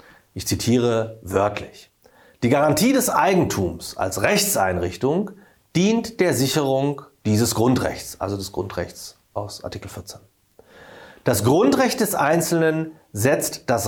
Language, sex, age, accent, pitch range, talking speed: German, male, 40-59, German, 105-150 Hz, 110 wpm